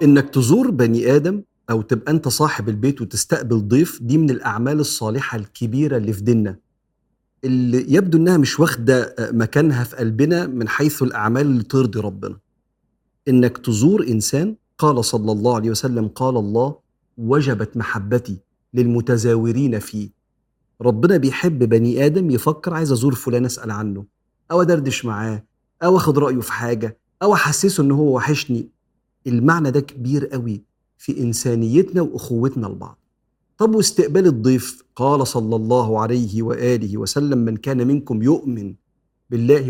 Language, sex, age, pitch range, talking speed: Arabic, male, 40-59, 115-150 Hz, 140 wpm